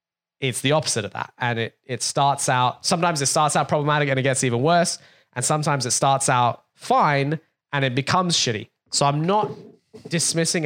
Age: 10-29